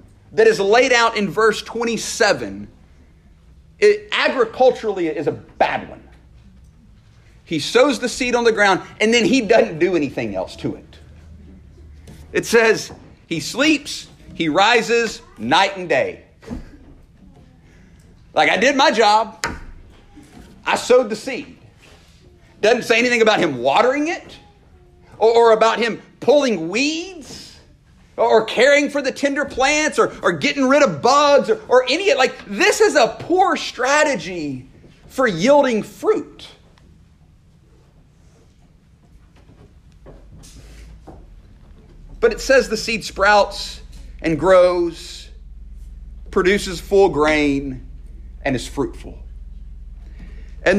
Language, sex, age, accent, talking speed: English, male, 50-69, American, 120 wpm